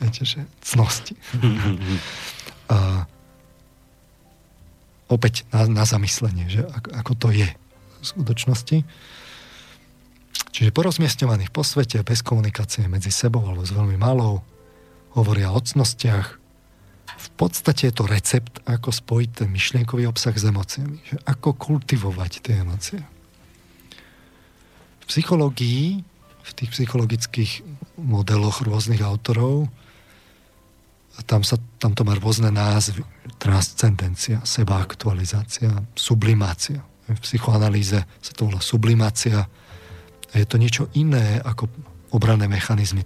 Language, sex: Slovak, male